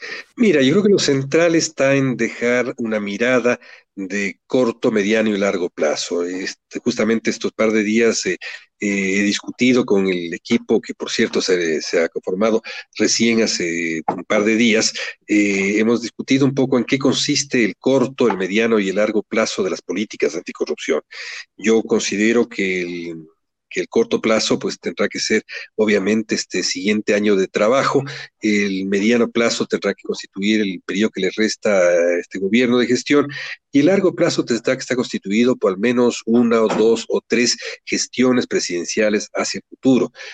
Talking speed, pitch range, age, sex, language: 175 wpm, 105-125 Hz, 40-59, male, Spanish